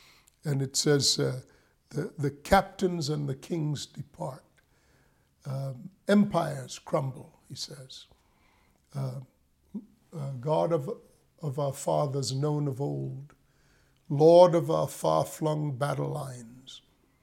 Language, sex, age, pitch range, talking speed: English, male, 50-69, 135-165 Hz, 115 wpm